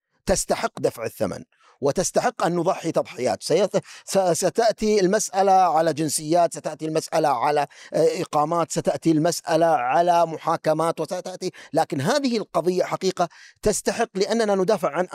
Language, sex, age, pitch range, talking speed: Arabic, male, 50-69, 170-235 Hz, 110 wpm